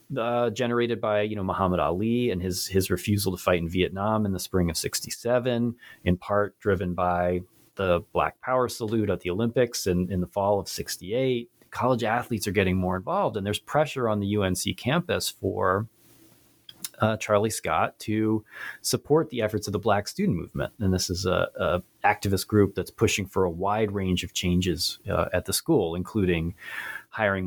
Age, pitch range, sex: 30-49, 90-110 Hz, male